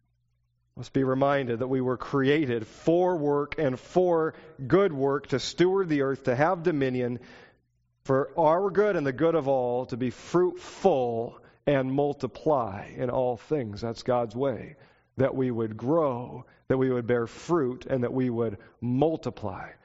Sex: male